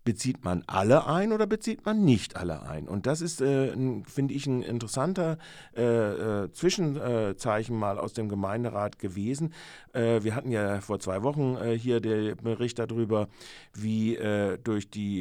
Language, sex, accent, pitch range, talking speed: German, male, German, 95-120 Hz, 140 wpm